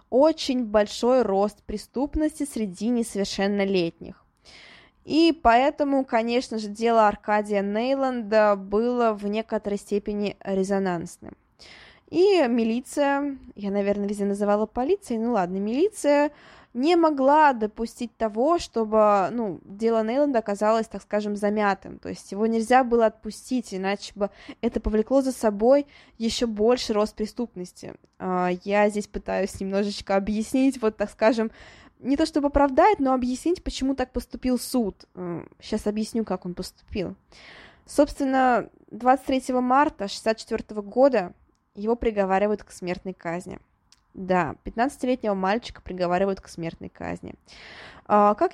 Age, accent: 20-39, native